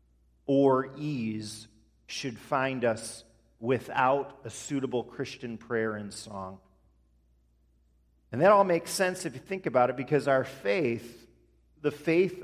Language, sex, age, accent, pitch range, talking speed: English, male, 40-59, American, 110-145 Hz, 130 wpm